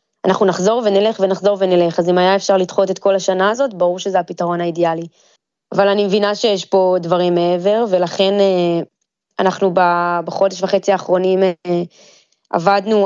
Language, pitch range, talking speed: Hebrew, 180-200 Hz, 145 wpm